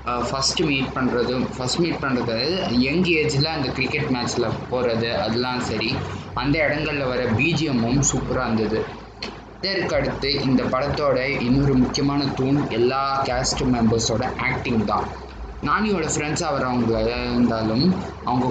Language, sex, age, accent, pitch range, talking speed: Tamil, male, 20-39, native, 115-145 Hz, 120 wpm